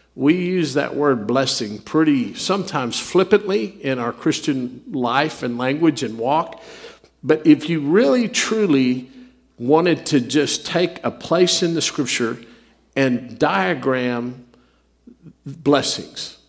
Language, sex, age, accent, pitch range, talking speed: English, male, 50-69, American, 125-155 Hz, 120 wpm